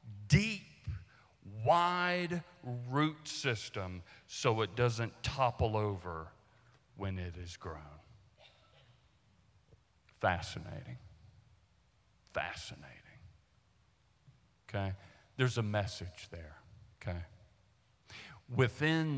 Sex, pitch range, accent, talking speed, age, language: male, 95-120 Hz, American, 70 wpm, 50-69, English